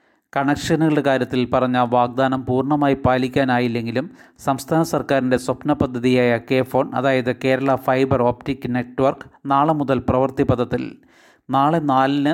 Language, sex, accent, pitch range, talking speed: Malayalam, male, native, 130-145 Hz, 105 wpm